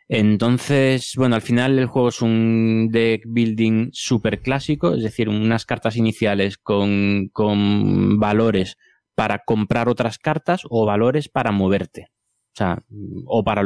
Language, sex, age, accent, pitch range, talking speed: Spanish, male, 20-39, Spanish, 105-125 Hz, 140 wpm